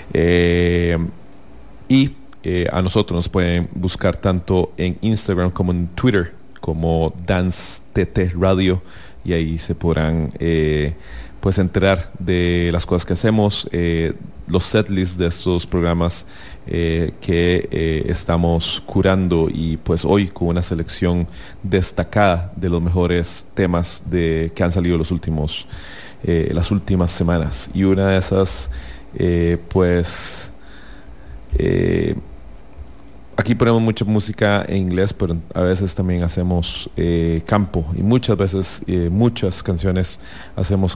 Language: English